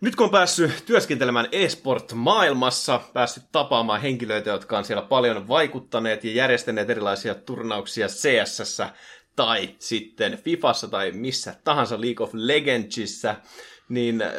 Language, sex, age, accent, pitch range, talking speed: Finnish, male, 30-49, native, 115-160 Hz, 120 wpm